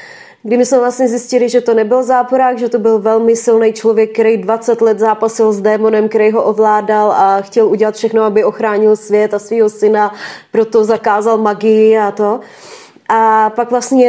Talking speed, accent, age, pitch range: 175 wpm, native, 20-39, 225-270 Hz